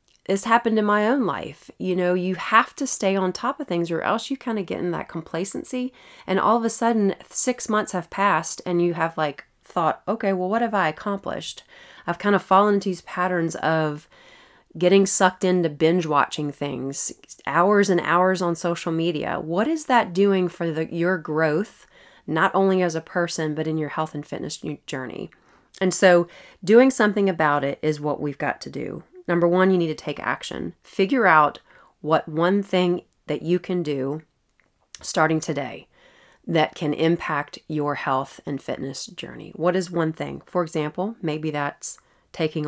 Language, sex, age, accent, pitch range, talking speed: English, female, 30-49, American, 155-190 Hz, 185 wpm